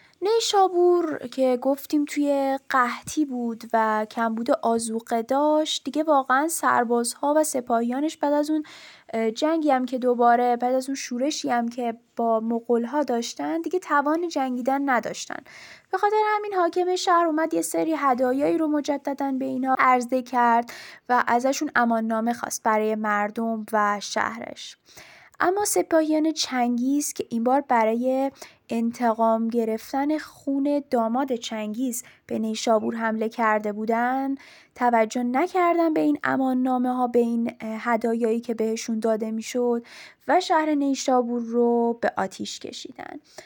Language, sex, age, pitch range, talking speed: Persian, female, 10-29, 230-295 Hz, 130 wpm